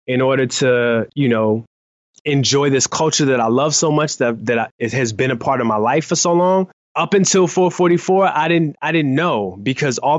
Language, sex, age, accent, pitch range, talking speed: English, male, 20-39, American, 115-150 Hz, 220 wpm